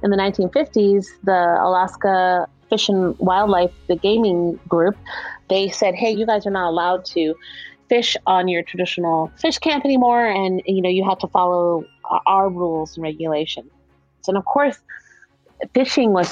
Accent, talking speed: American, 160 wpm